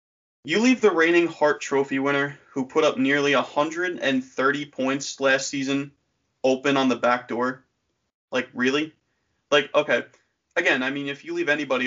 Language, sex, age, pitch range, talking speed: English, male, 20-39, 130-160 Hz, 155 wpm